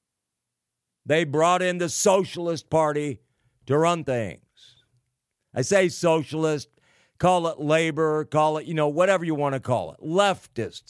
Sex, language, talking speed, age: male, English, 145 wpm, 50-69